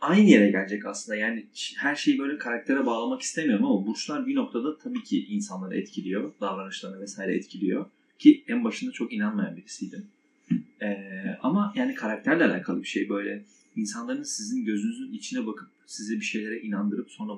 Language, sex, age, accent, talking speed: Turkish, male, 30-49, native, 160 wpm